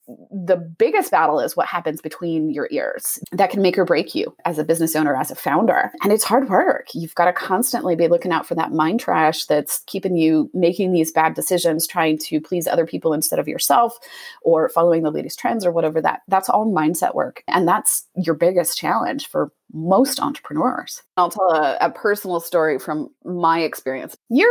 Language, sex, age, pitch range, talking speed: English, female, 30-49, 160-215 Hz, 200 wpm